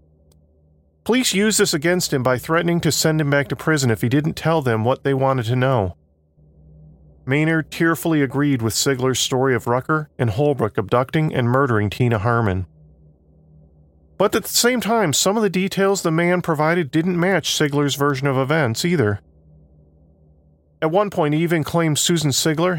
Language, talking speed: English, 170 wpm